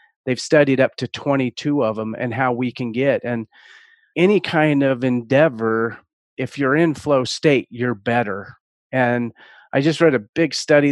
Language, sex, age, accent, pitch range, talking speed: English, male, 40-59, American, 120-140 Hz, 170 wpm